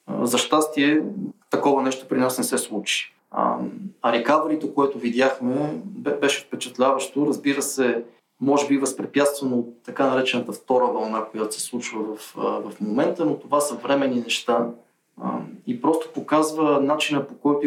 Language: Bulgarian